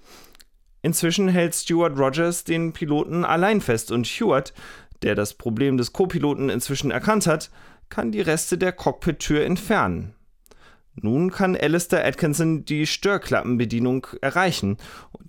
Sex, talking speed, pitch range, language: male, 125 wpm, 110-160 Hz, German